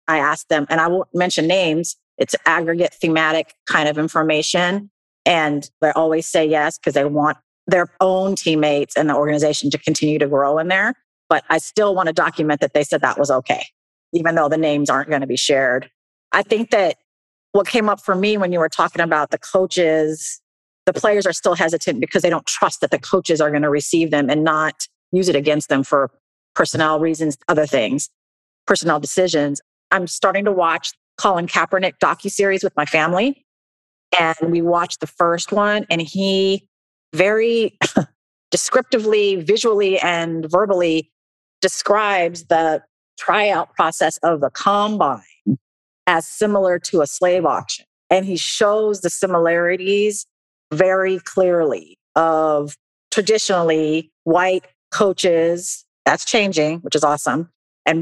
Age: 30-49